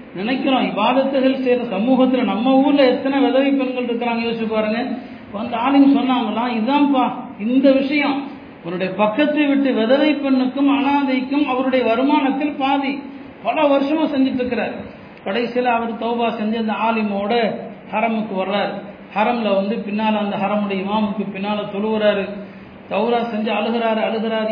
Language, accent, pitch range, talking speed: Tamil, native, 210-265 Hz, 115 wpm